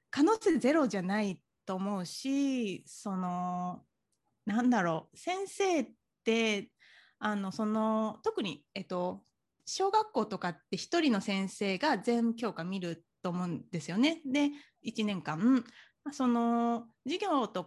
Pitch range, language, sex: 195-275 Hz, Japanese, female